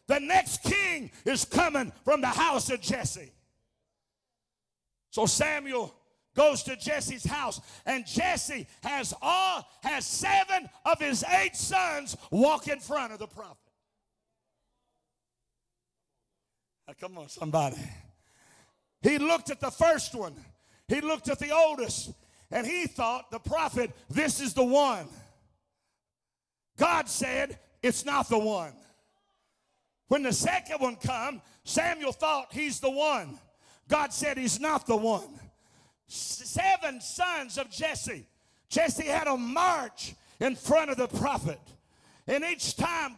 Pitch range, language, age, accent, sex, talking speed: 240-315 Hz, English, 50-69, American, male, 130 wpm